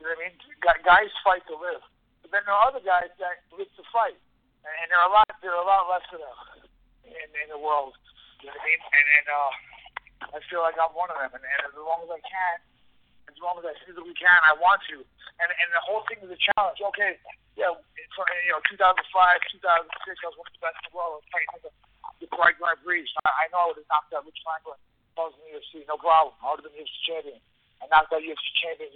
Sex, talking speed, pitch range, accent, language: male, 260 wpm, 155-190 Hz, American, English